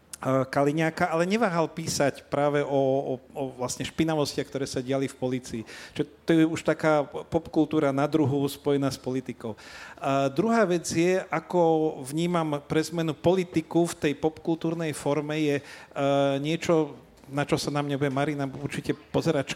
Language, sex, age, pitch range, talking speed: Slovak, male, 40-59, 145-165 Hz, 155 wpm